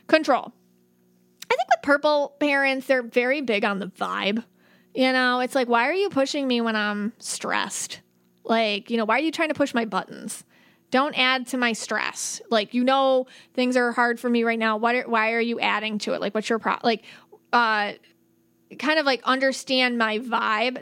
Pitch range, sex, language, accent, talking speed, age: 215-260 Hz, female, English, American, 200 wpm, 30-49